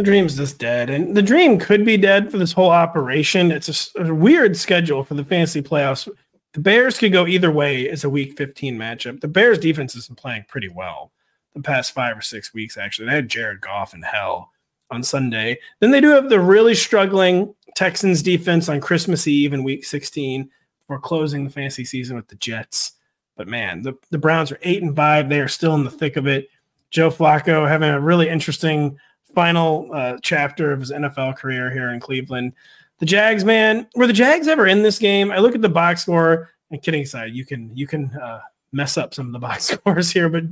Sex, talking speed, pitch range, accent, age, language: male, 215 wpm, 140-185 Hz, American, 30-49, English